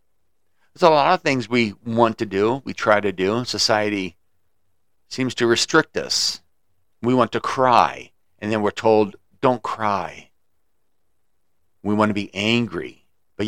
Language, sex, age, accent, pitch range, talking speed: English, male, 50-69, American, 95-120 Hz, 155 wpm